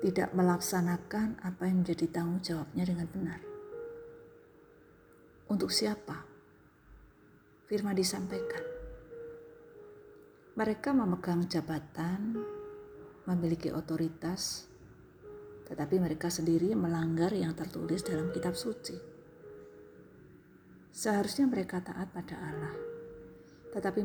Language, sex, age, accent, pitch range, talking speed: Indonesian, female, 40-59, native, 165-210 Hz, 80 wpm